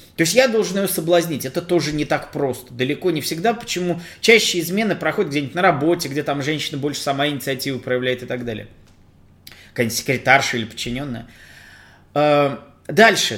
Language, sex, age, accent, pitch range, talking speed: Russian, male, 20-39, native, 140-175 Hz, 160 wpm